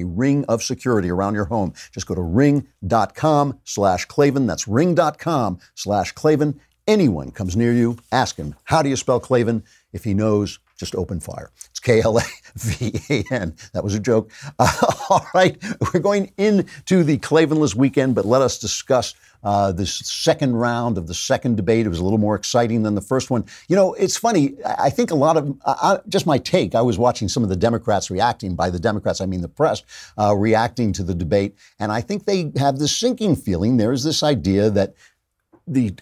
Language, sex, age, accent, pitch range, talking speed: English, male, 50-69, American, 100-140 Hz, 195 wpm